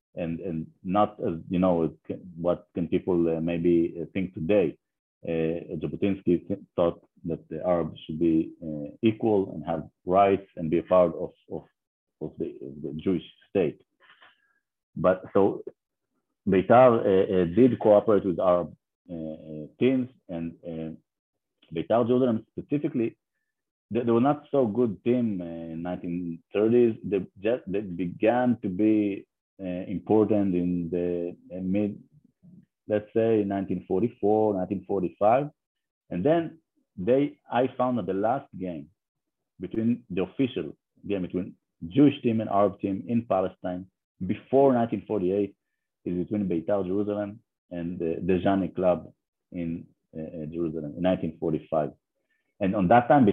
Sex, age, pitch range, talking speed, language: male, 50-69, 85-110 Hz, 135 wpm, English